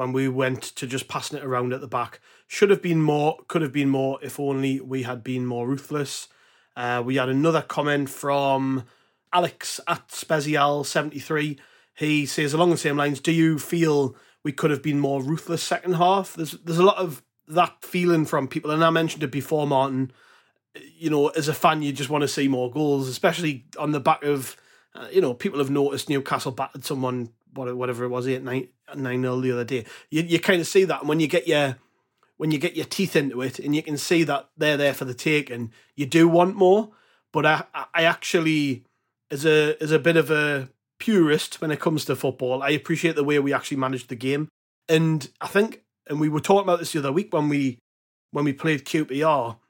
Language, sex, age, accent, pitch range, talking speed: English, male, 30-49, British, 135-160 Hz, 220 wpm